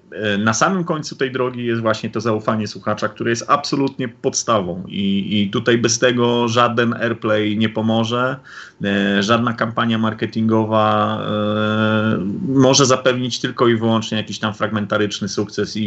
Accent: native